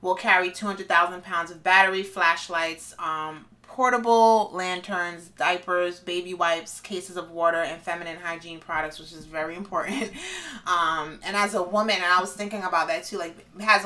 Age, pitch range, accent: 30-49, 170-200 Hz, American